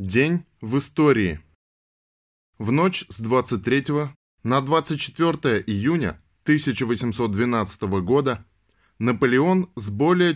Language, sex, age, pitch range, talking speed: Russian, male, 20-39, 105-145 Hz, 85 wpm